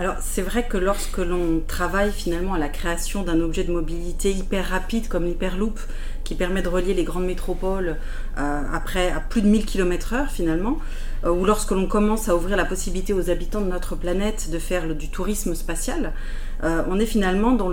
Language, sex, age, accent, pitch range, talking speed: French, female, 30-49, French, 170-210 Hz, 190 wpm